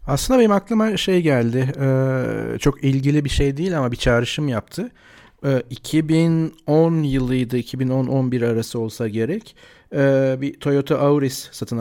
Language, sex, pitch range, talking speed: Turkish, male, 120-150 Hz, 120 wpm